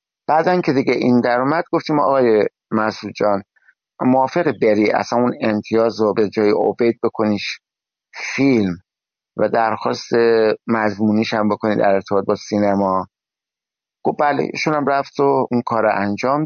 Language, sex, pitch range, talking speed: Persian, male, 105-135 Hz, 135 wpm